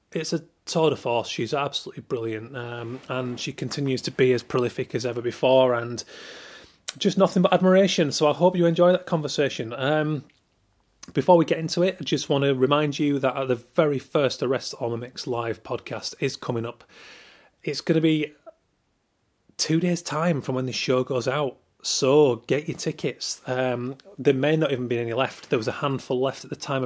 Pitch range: 125-155 Hz